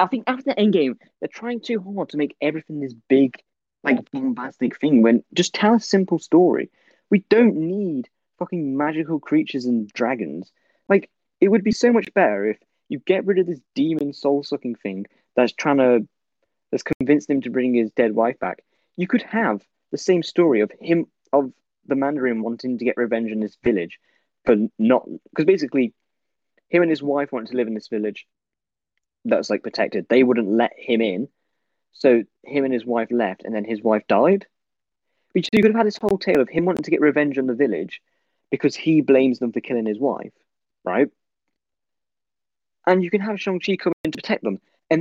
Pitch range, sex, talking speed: 125-195 Hz, male, 200 wpm